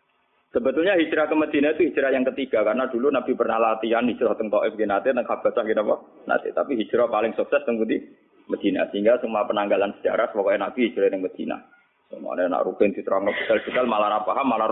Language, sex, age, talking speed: Indonesian, male, 30-49, 180 wpm